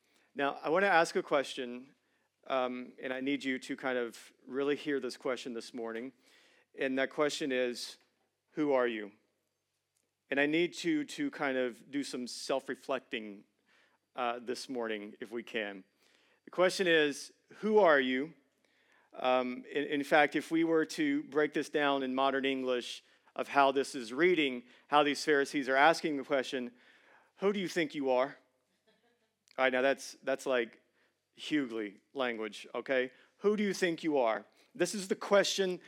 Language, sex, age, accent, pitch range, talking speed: English, male, 40-59, American, 130-185 Hz, 170 wpm